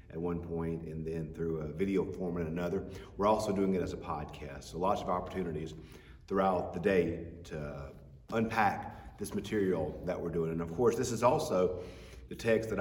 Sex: male